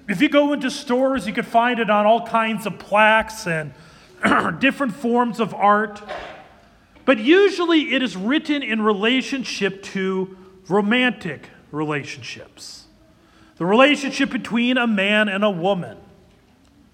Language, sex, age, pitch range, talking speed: English, male, 40-59, 180-255 Hz, 130 wpm